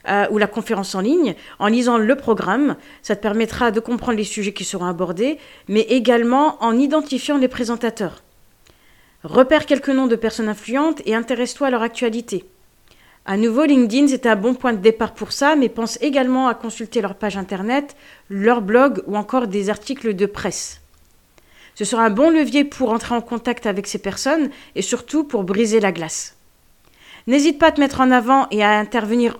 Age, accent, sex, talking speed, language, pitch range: 40-59, French, female, 190 wpm, French, 210-260 Hz